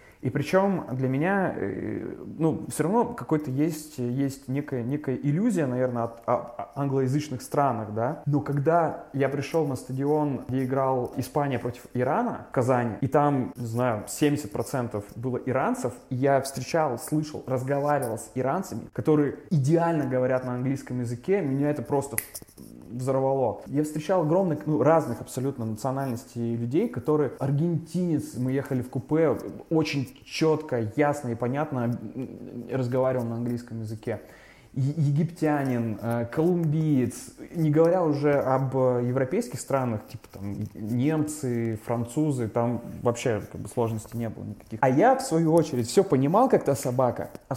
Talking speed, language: 140 wpm, Russian